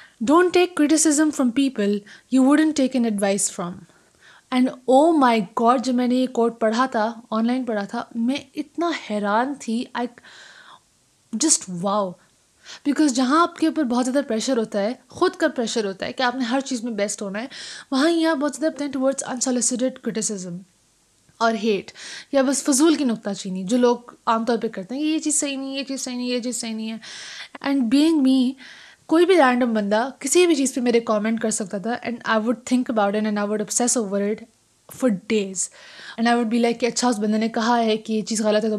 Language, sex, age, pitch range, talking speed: Urdu, female, 20-39, 220-275 Hz, 215 wpm